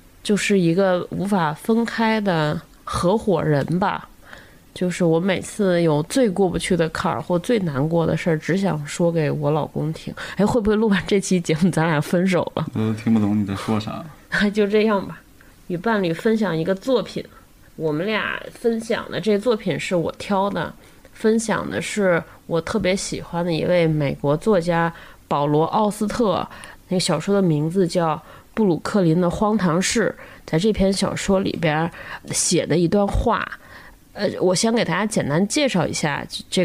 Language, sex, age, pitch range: Chinese, female, 20-39, 160-200 Hz